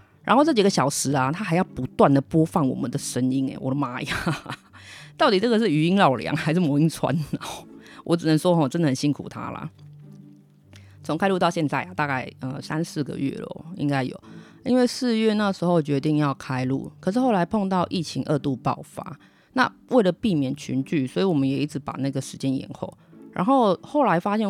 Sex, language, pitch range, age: female, Chinese, 135-185 Hz, 30-49